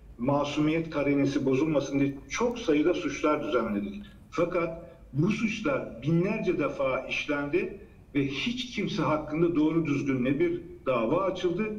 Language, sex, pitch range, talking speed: Turkish, male, 145-210 Hz, 120 wpm